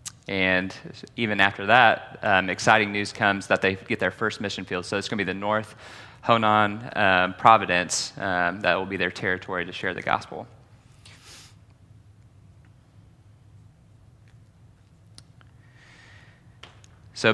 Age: 20-39